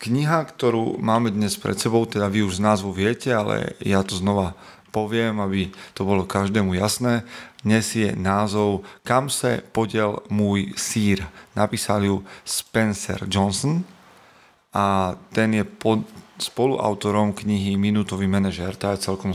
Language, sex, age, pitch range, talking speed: Slovak, male, 40-59, 100-120 Hz, 135 wpm